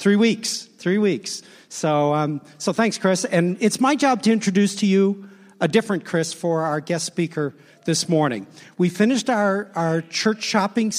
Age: 50-69